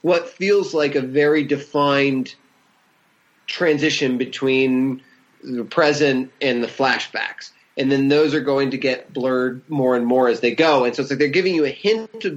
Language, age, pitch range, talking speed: English, 30-49, 135-180 Hz, 180 wpm